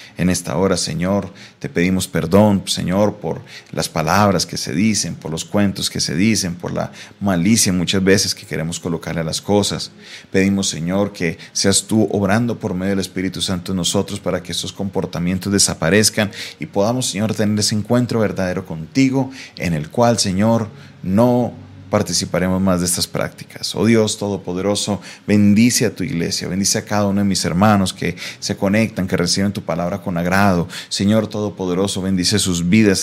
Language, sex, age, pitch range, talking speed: Spanish, male, 30-49, 90-105 Hz, 175 wpm